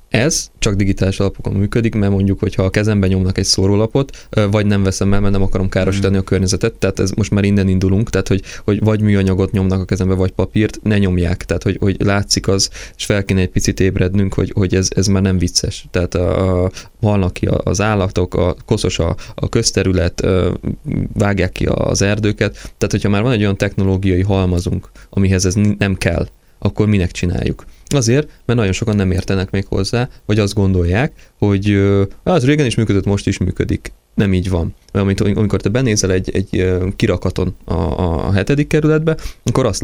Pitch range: 95-110 Hz